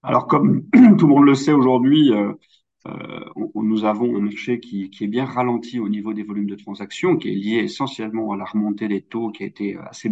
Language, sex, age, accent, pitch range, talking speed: French, male, 40-59, French, 100-120 Hz, 220 wpm